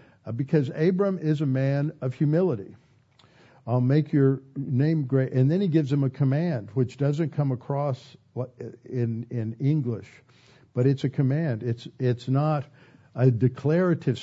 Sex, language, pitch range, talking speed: male, English, 120-145 Hz, 150 wpm